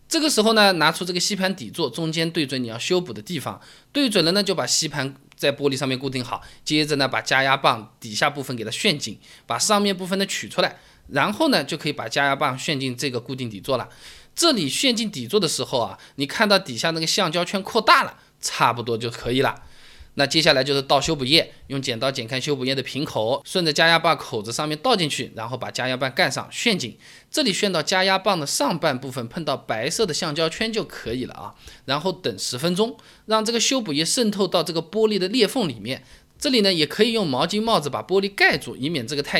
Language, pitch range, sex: Chinese, 130-200 Hz, male